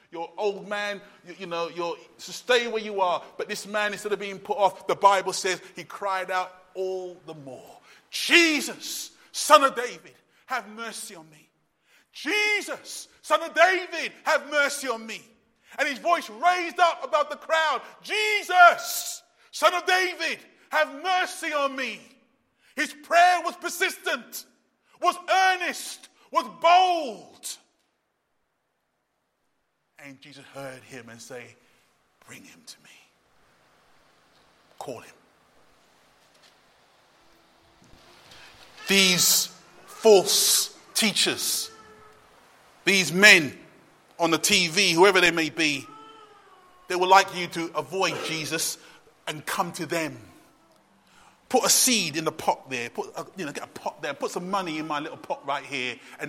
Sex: male